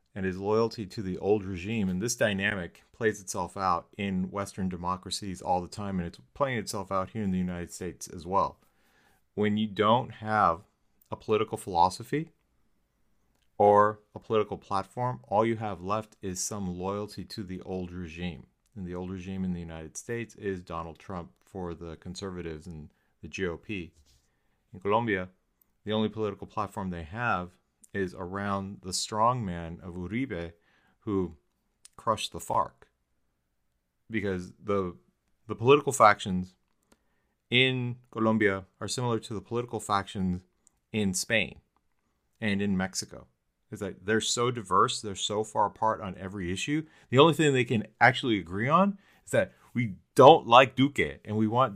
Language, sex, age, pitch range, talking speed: English, male, 40-59, 90-110 Hz, 155 wpm